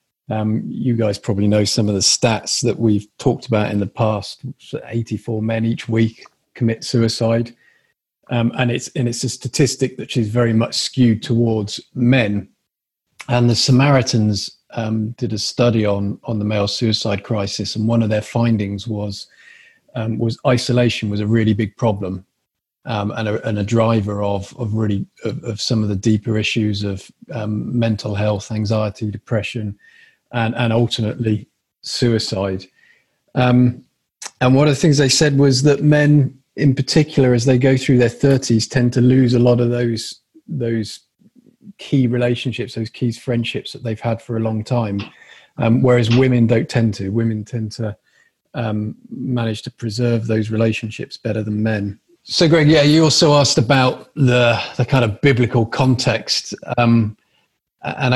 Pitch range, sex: 110-125 Hz, male